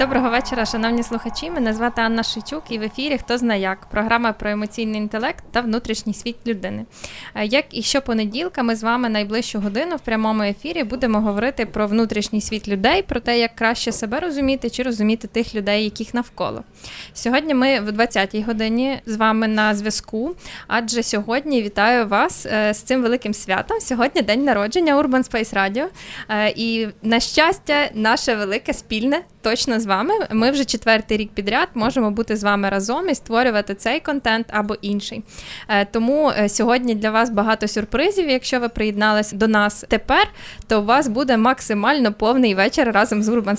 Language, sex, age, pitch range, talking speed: Ukrainian, female, 20-39, 215-255 Hz, 170 wpm